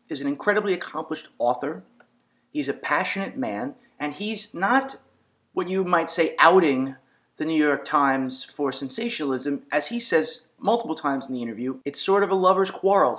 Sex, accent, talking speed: male, American, 170 wpm